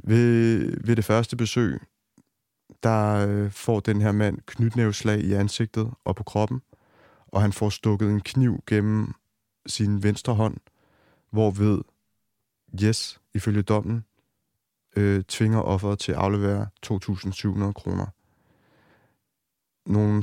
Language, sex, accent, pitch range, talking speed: Danish, male, native, 100-115 Hz, 115 wpm